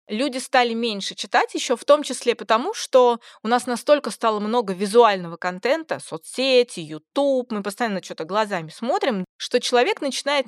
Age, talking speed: 20-39, 155 wpm